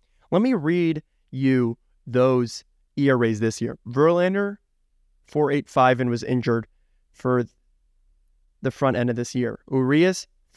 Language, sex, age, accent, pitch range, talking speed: English, male, 20-39, American, 125-160 Hz, 120 wpm